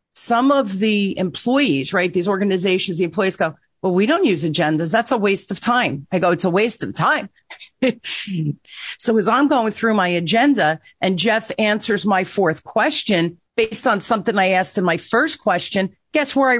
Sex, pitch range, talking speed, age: female, 180-230 Hz, 190 wpm, 40-59